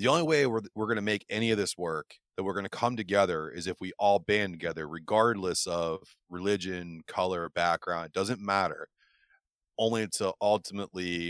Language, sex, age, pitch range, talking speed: English, male, 30-49, 90-105 Hz, 185 wpm